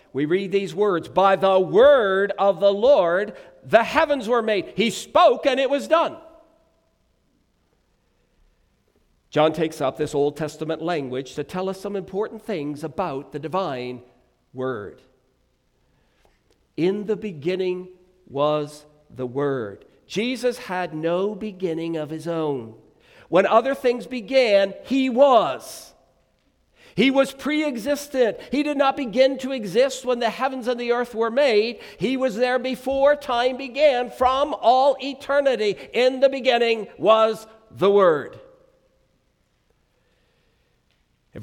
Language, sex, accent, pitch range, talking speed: English, male, American, 175-265 Hz, 130 wpm